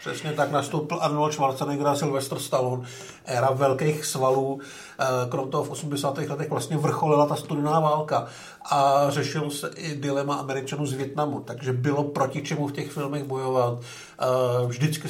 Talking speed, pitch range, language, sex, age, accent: 155 wpm, 130-145 Hz, Czech, male, 50-69, native